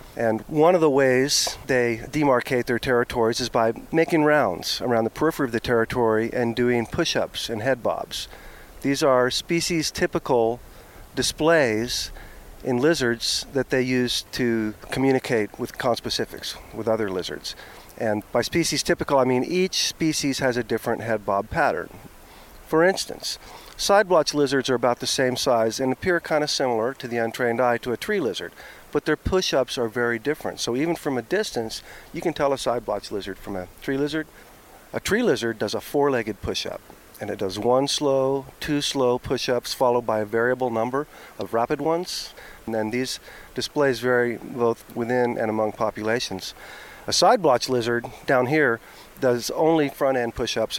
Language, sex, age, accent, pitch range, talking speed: English, male, 50-69, American, 115-145 Hz, 165 wpm